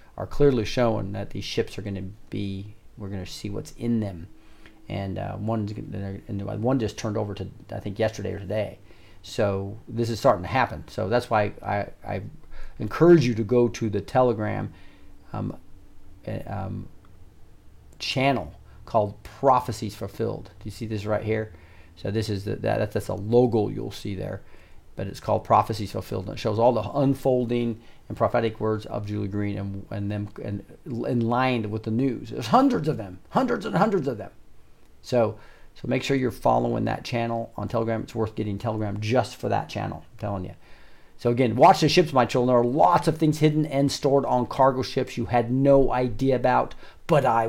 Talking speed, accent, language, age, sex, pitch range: 200 wpm, American, English, 40-59, male, 100-125 Hz